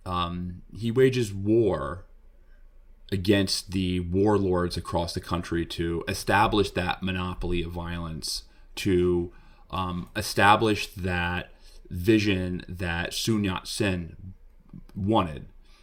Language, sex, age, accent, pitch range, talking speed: English, male, 30-49, American, 85-95 Hz, 95 wpm